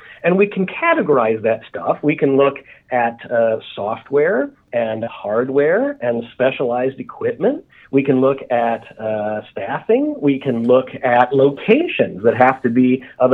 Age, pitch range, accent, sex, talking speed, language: 40-59, 120-175 Hz, American, male, 150 wpm, English